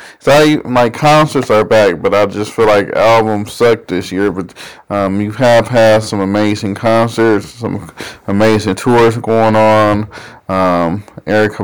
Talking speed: 155 wpm